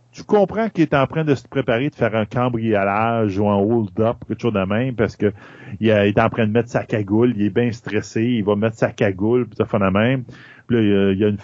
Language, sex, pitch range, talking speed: French, male, 110-135 Hz, 260 wpm